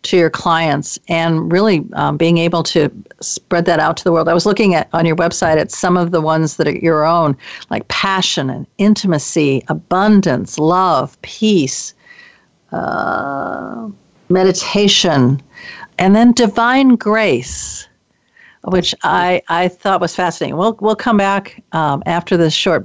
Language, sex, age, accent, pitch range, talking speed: English, female, 50-69, American, 165-200 Hz, 150 wpm